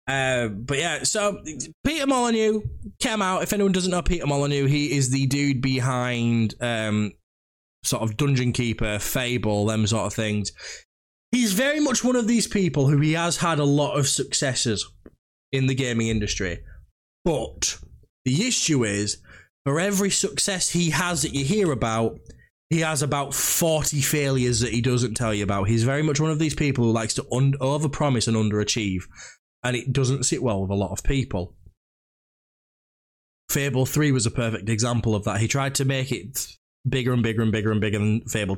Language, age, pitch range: English, 20-39, 110-160 Hz